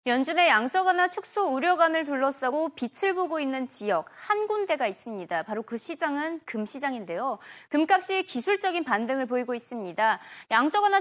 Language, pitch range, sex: Korean, 245-345 Hz, female